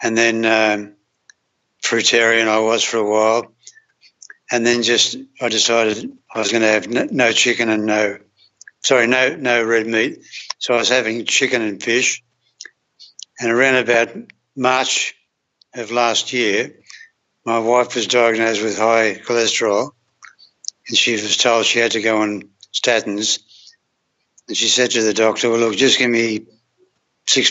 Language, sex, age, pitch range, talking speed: English, male, 60-79, 110-120 Hz, 155 wpm